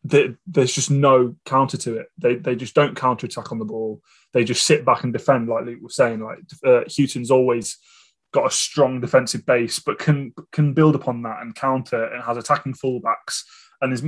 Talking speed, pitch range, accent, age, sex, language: 200 wpm, 120-145 Hz, British, 20-39, male, English